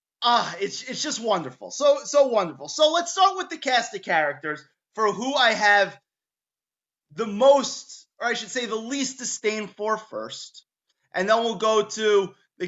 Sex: male